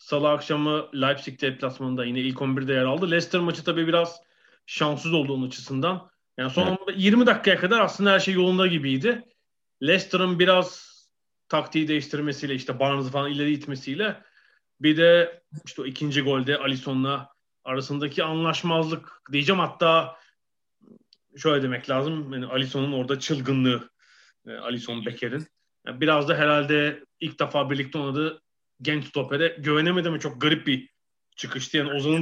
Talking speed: 130 wpm